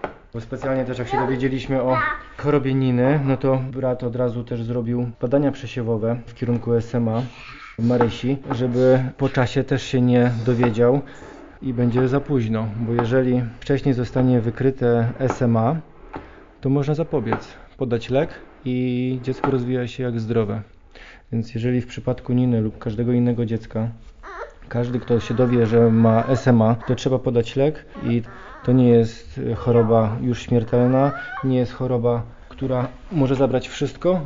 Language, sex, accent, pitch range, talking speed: Polish, male, native, 120-135 Hz, 150 wpm